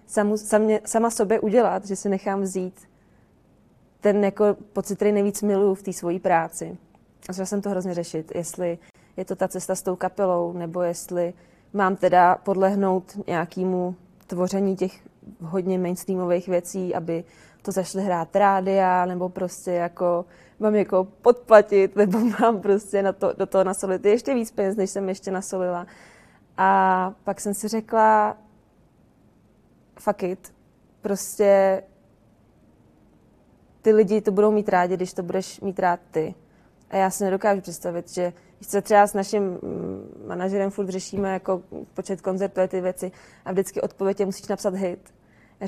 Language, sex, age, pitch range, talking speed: Czech, female, 20-39, 180-205 Hz, 155 wpm